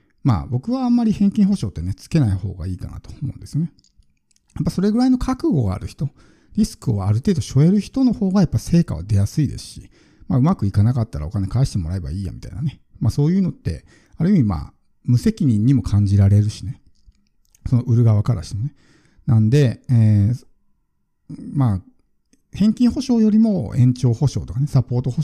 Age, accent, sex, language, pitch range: 50-69, native, male, Japanese, 105-150 Hz